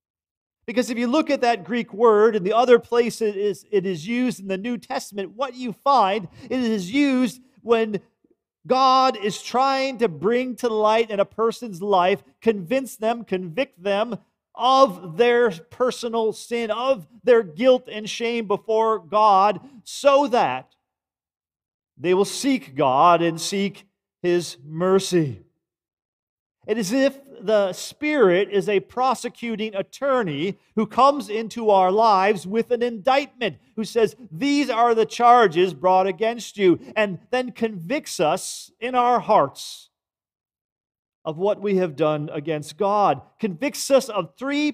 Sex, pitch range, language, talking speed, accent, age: male, 185-245 Hz, English, 145 wpm, American, 40-59